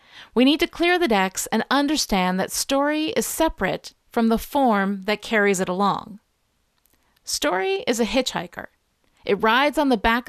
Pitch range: 200-280 Hz